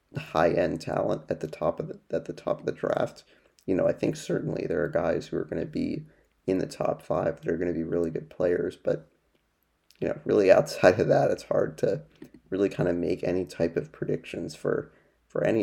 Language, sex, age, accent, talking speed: English, male, 30-49, American, 225 wpm